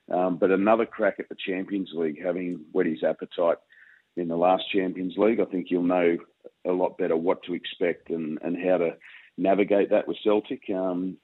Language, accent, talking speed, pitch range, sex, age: English, Australian, 190 wpm, 85-100 Hz, male, 40-59